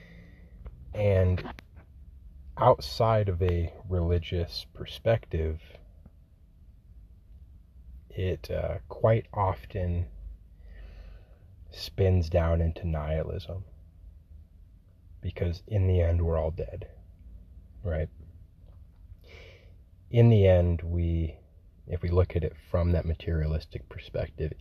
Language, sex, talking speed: English, male, 85 wpm